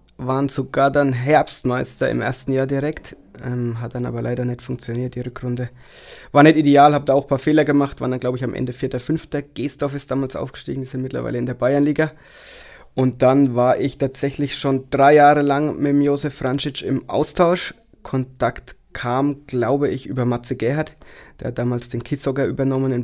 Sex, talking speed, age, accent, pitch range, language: male, 185 wpm, 20-39, German, 125-140 Hz, German